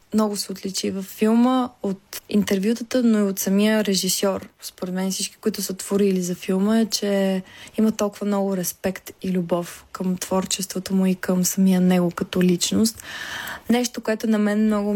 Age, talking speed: 20-39, 170 wpm